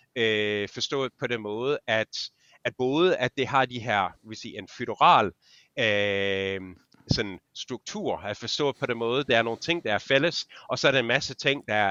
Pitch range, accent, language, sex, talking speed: 105-135 Hz, native, Danish, male, 190 wpm